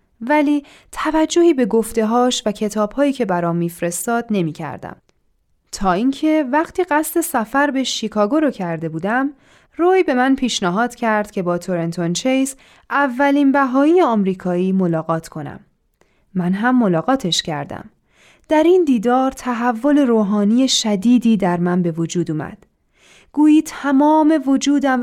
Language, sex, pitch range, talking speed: Persian, female, 195-280 Hz, 125 wpm